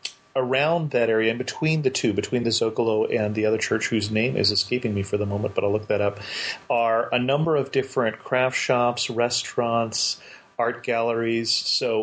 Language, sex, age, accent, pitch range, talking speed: English, male, 40-59, American, 110-125 Hz, 190 wpm